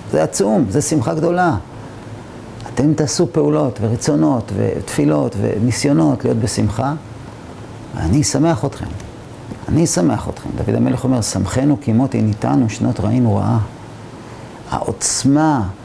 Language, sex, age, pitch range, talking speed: Hebrew, male, 40-59, 110-135 Hz, 110 wpm